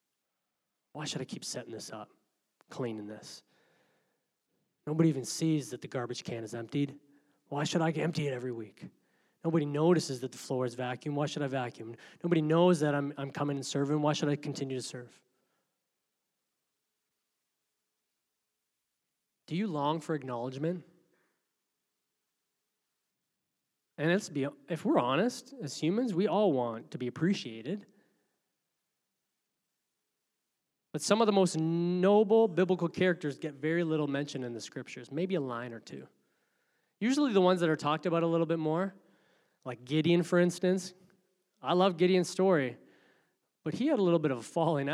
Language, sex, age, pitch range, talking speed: English, male, 20-39, 140-190 Hz, 155 wpm